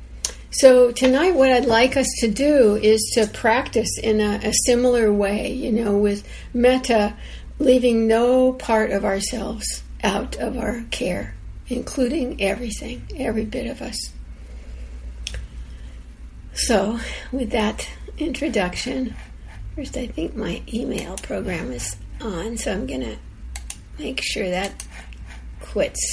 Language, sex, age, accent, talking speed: English, female, 60-79, American, 125 wpm